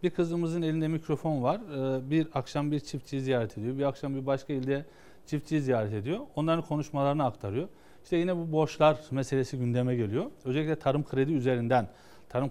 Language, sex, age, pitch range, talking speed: Turkish, male, 40-59, 125-175 Hz, 165 wpm